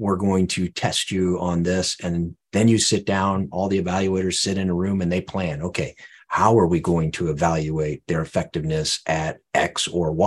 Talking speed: 200 wpm